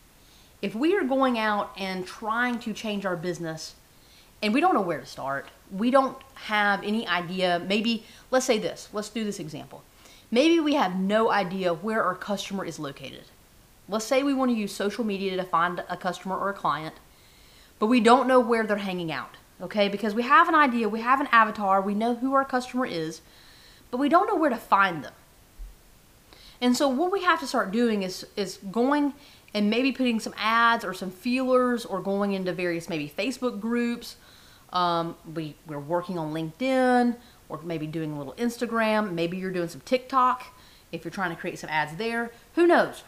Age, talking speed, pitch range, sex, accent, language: 30-49, 195 wpm, 180-255 Hz, female, American, English